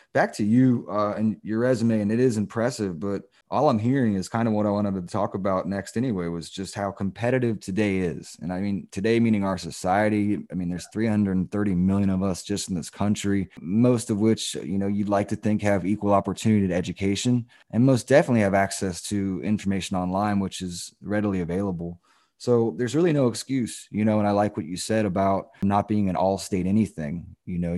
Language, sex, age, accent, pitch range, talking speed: English, male, 20-39, American, 90-105 Hz, 210 wpm